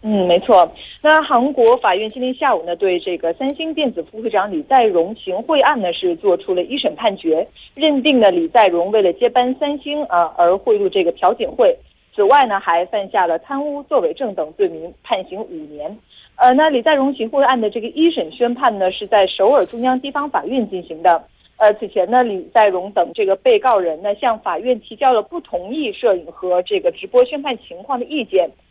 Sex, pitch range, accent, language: female, 185-295 Hz, Chinese, Korean